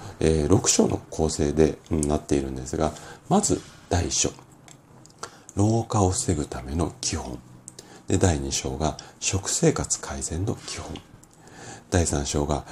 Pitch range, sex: 75-105 Hz, male